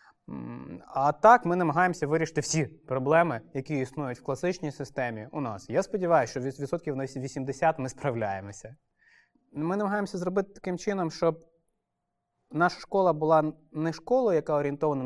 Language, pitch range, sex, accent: Ukrainian, 135-165 Hz, male, native